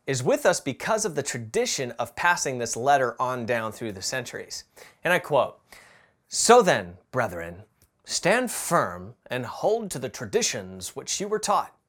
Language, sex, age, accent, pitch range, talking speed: English, male, 30-49, American, 125-195 Hz, 165 wpm